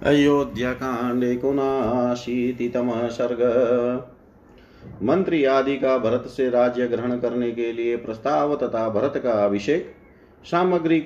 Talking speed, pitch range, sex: 120 wpm, 115-130 Hz, male